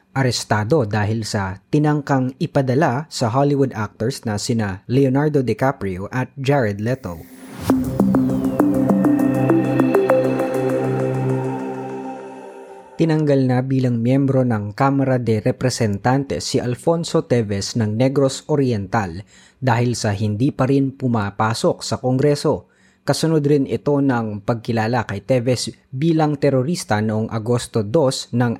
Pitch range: 105-135 Hz